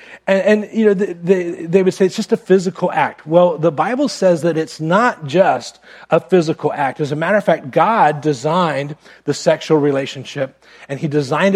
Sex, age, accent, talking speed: male, 40-59, American, 195 wpm